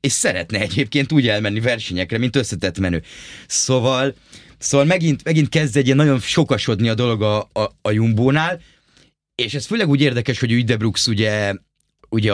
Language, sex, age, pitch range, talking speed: Hungarian, male, 30-49, 100-130 Hz, 170 wpm